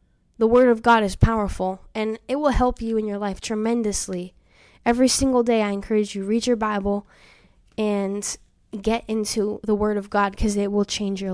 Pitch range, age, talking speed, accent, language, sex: 210-245 Hz, 10-29, 190 wpm, American, English, female